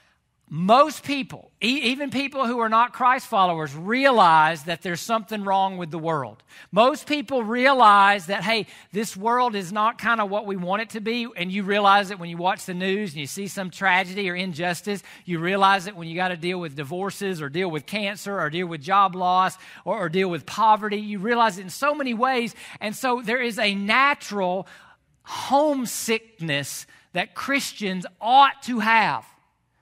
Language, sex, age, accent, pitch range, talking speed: English, male, 40-59, American, 185-240 Hz, 185 wpm